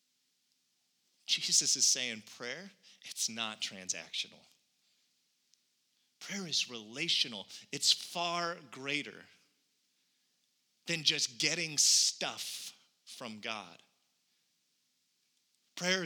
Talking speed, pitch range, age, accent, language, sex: 75 wpm, 125-170 Hz, 30-49, American, English, male